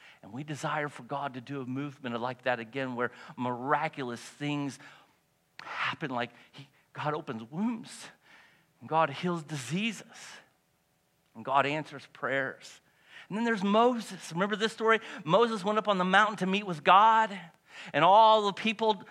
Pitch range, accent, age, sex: 150-210 Hz, American, 50-69, male